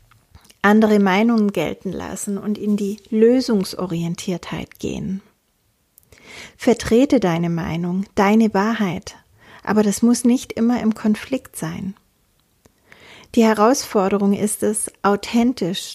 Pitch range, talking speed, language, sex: 190-230 Hz, 100 wpm, German, female